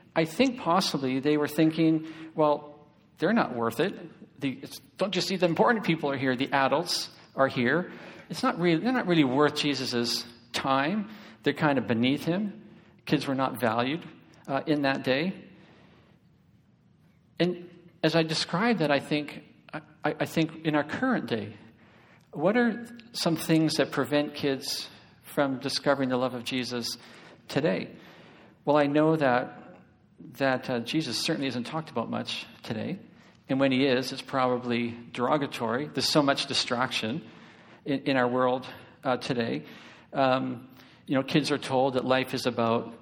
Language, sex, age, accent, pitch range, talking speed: English, male, 50-69, American, 130-165 Hz, 160 wpm